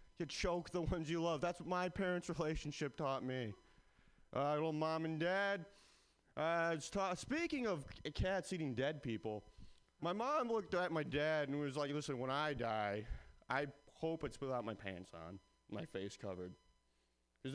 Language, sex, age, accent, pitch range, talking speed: English, male, 30-49, American, 100-165 Hz, 175 wpm